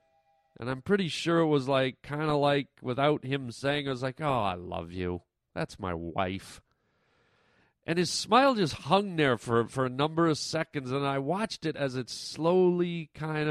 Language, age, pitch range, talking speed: English, 40-59, 125-165 Hz, 190 wpm